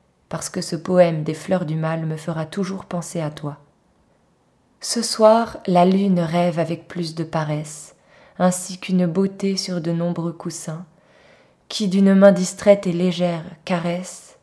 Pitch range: 165-185 Hz